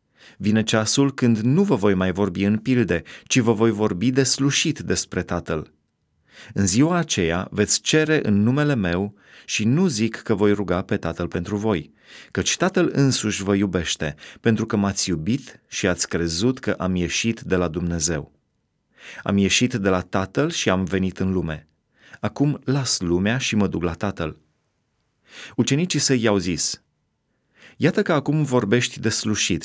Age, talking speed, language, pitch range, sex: 30-49, 165 wpm, Romanian, 95-130 Hz, male